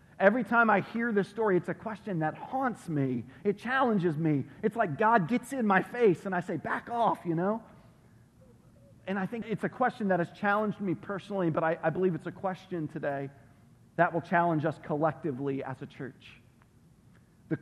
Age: 40-59